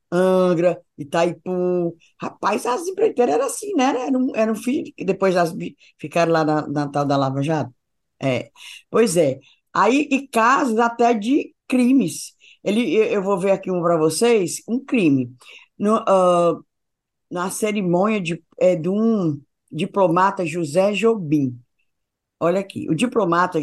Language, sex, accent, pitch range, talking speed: Portuguese, female, Brazilian, 170-235 Hz, 145 wpm